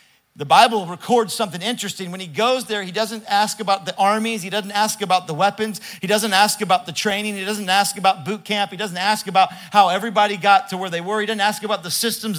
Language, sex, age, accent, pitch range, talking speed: English, male, 40-59, American, 185-225 Hz, 240 wpm